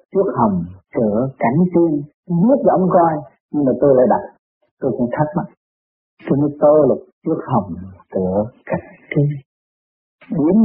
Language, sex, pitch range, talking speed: Vietnamese, male, 125-160 Hz, 120 wpm